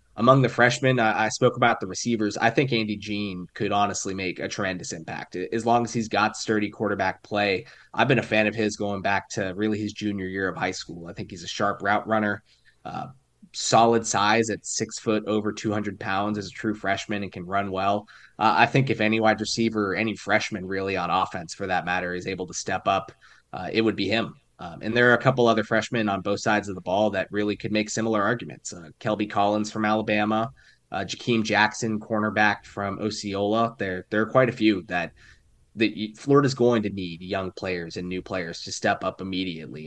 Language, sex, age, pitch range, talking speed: English, male, 20-39, 100-110 Hz, 220 wpm